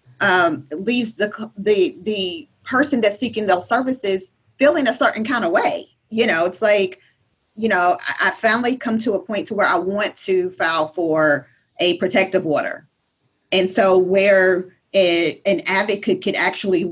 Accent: American